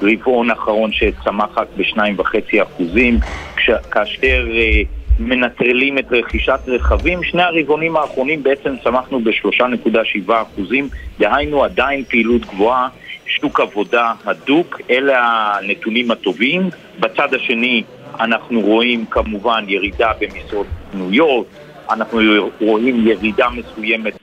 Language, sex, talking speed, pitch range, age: Hebrew, male, 100 wpm, 115-180 Hz, 50-69